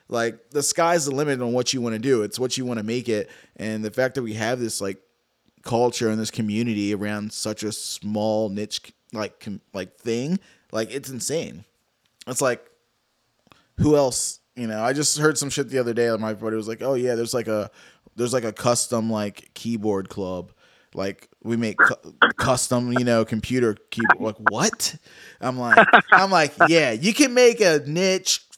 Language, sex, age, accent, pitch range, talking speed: English, male, 20-39, American, 110-145 Hz, 195 wpm